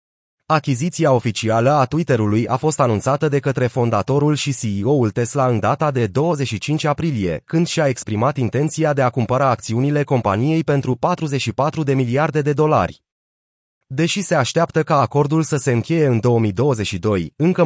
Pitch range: 115-150 Hz